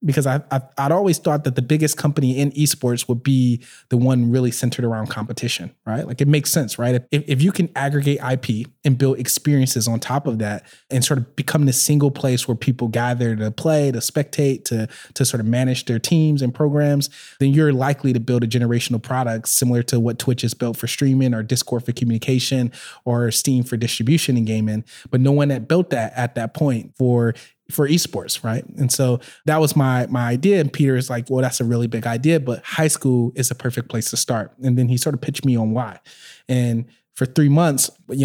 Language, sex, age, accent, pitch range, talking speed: English, male, 20-39, American, 120-140 Hz, 220 wpm